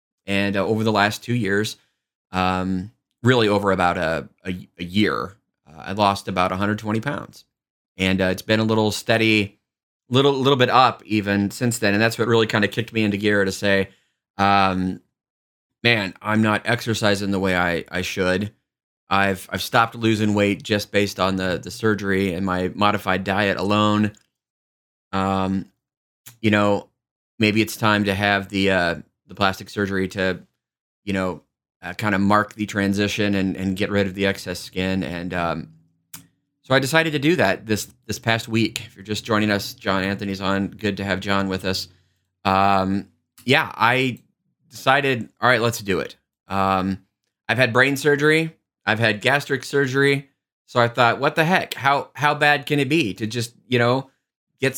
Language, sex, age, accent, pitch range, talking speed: English, male, 30-49, American, 95-115 Hz, 180 wpm